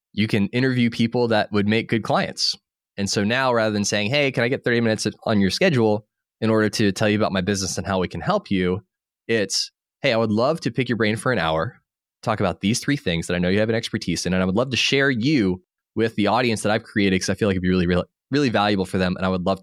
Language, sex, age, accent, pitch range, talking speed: English, male, 20-39, American, 95-125 Hz, 280 wpm